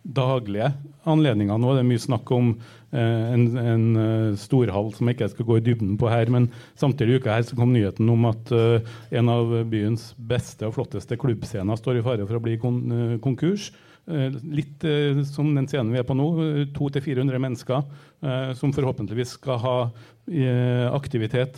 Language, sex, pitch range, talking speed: English, male, 115-135 Hz, 170 wpm